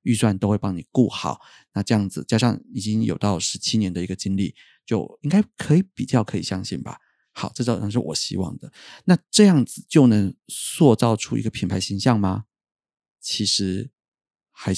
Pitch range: 100-120 Hz